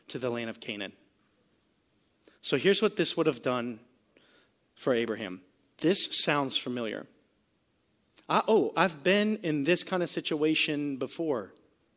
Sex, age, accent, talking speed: male, 40-59, American, 130 wpm